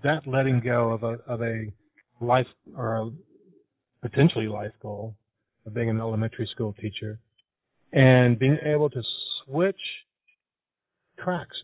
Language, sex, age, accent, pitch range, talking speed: English, male, 40-59, American, 110-130 Hz, 130 wpm